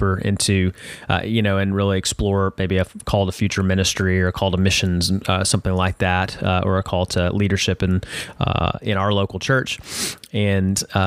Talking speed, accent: 190 wpm, American